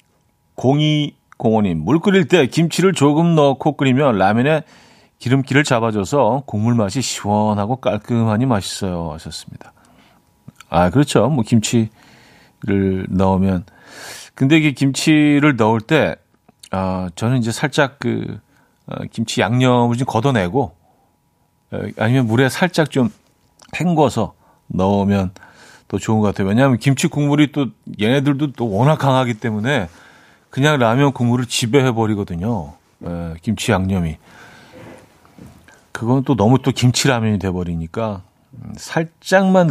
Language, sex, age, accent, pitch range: Korean, male, 40-59, native, 100-140 Hz